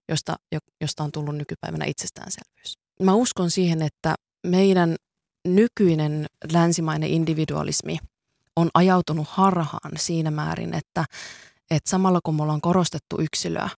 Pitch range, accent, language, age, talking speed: 155-180 Hz, native, Finnish, 20-39, 120 wpm